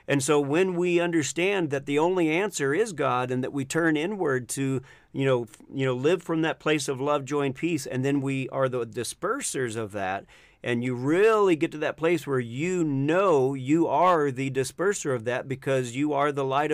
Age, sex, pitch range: 40-59, male, 135-165 Hz